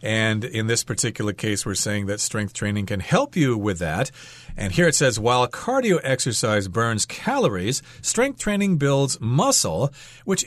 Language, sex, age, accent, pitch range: Chinese, male, 40-59, American, 105-145 Hz